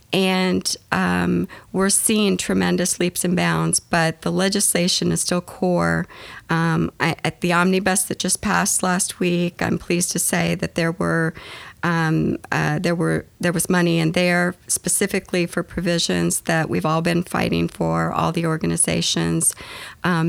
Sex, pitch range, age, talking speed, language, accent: female, 155-180 Hz, 40-59, 155 wpm, English, American